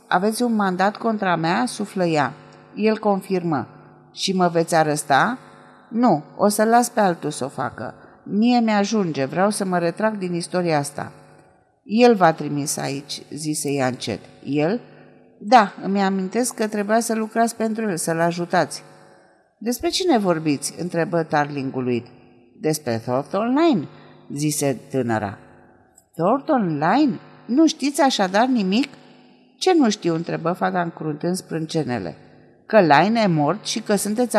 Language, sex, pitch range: Romanian, female, 155-230 Hz